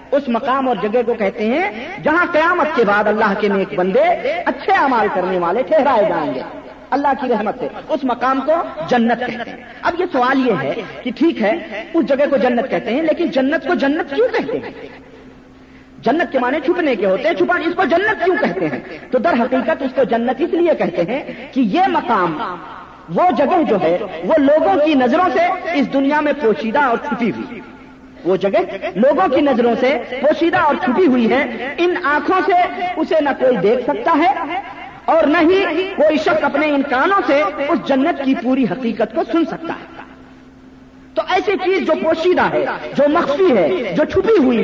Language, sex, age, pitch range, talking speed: Urdu, female, 40-59, 245-335 Hz, 200 wpm